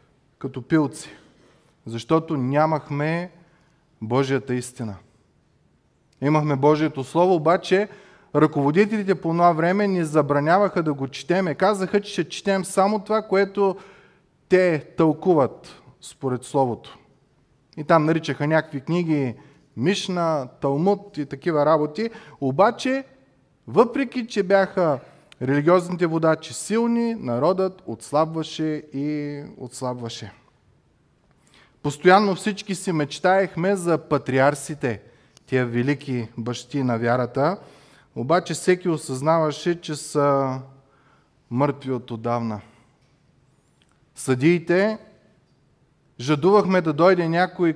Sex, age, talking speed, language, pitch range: male, 30-49, 95 wpm, Bulgarian, 135-185 Hz